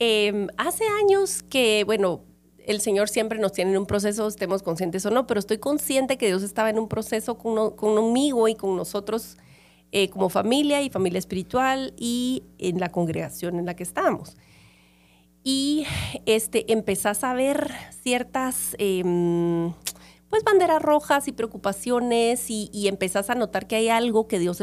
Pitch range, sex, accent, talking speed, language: 185-235 Hz, female, Mexican, 165 wpm, Spanish